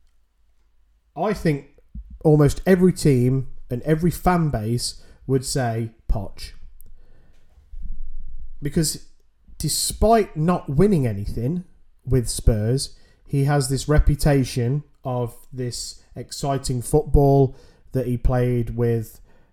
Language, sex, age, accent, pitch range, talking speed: English, male, 30-49, British, 100-150 Hz, 95 wpm